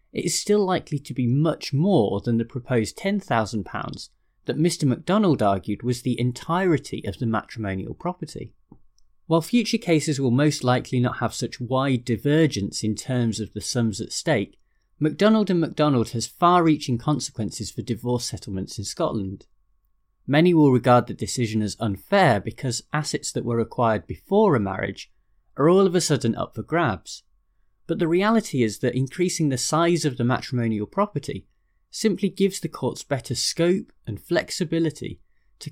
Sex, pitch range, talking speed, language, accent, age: male, 110-160 Hz, 160 wpm, English, British, 30-49